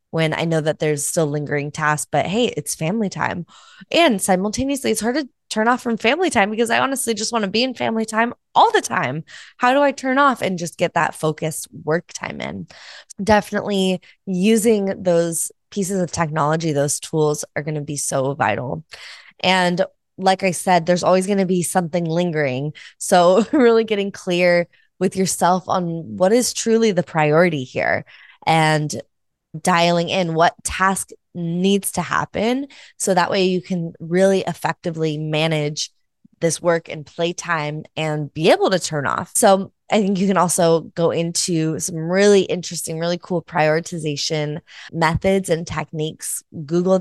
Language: English